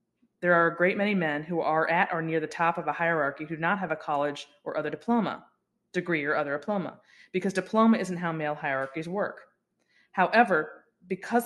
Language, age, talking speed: English, 30-49, 200 wpm